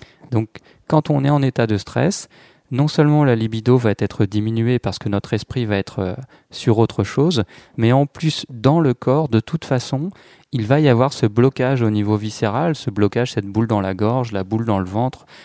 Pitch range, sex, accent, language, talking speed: 105-130 Hz, male, French, French, 210 wpm